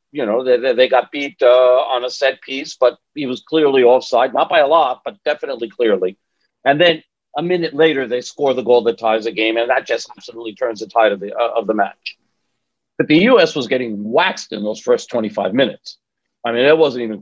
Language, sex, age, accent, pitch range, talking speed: English, male, 50-69, American, 140-220 Hz, 225 wpm